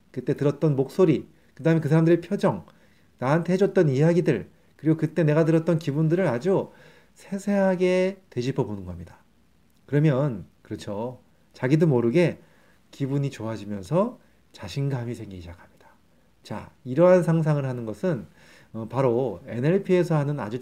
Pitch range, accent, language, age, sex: 115-175 Hz, native, Korean, 30-49, male